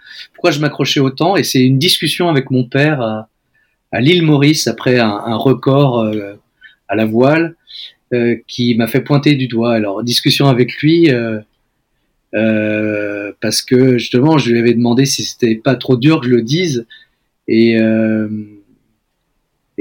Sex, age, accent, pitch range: male, 40-59, French, 115-140 Hz